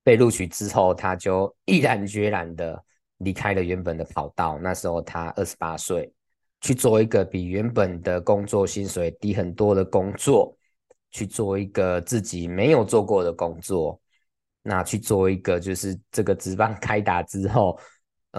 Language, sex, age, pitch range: Chinese, male, 20-39, 85-100 Hz